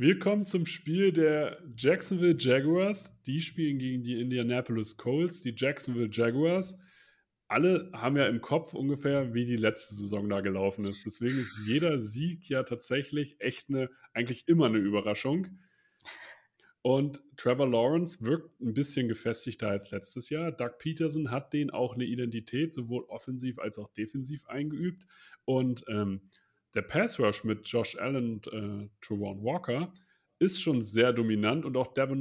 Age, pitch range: 30-49, 120-165 Hz